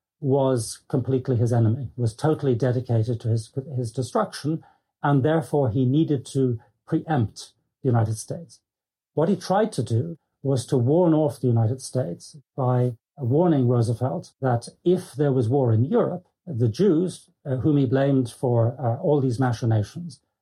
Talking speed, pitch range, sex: 155 wpm, 120-155 Hz, male